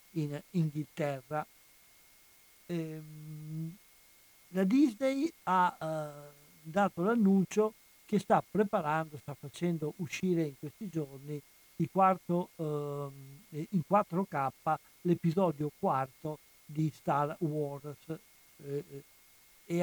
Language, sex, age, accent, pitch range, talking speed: Italian, male, 60-79, native, 140-170 Hz, 90 wpm